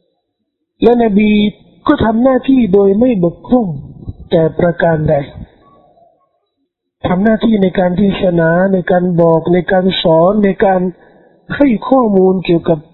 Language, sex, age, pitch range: Thai, male, 50-69, 170-210 Hz